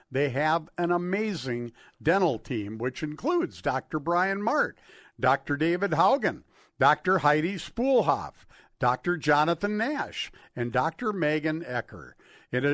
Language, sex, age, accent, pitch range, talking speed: English, male, 50-69, American, 125-185 Hz, 120 wpm